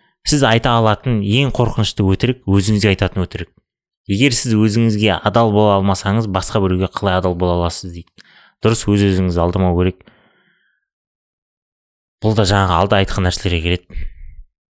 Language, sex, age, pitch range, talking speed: Russian, male, 20-39, 95-110 Hz, 95 wpm